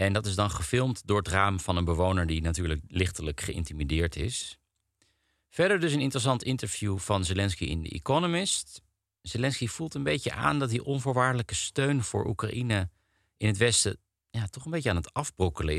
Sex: male